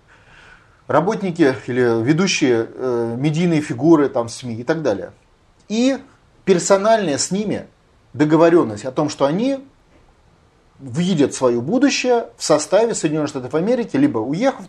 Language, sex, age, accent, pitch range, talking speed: Russian, male, 30-49, native, 135-195 Hz, 125 wpm